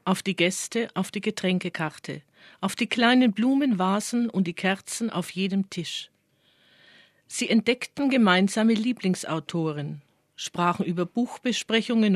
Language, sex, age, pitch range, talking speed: German, female, 50-69, 170-225 Hz, 115 wpm